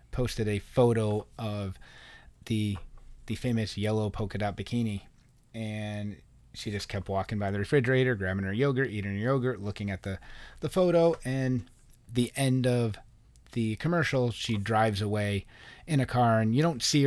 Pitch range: 105-125 Hz